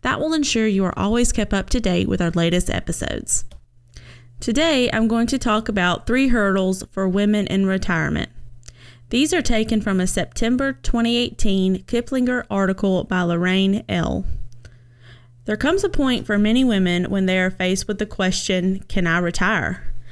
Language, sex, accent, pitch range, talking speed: English, female, American, 170-225 Hz, 165 wpm